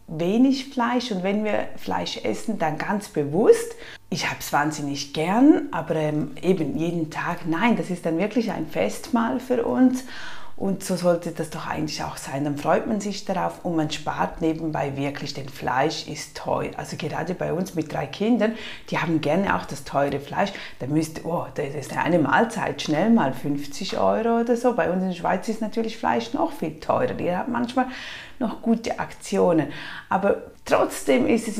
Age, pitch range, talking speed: 30-49, 150-215 Hz, 185 wpm